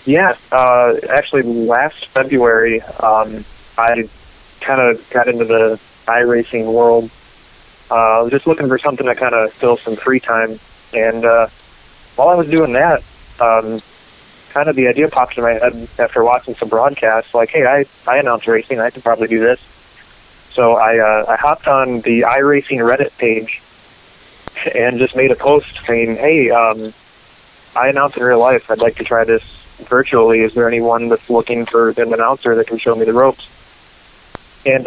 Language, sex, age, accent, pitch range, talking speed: English, male, 20-39, American, 115-130 Hz, 175 wpm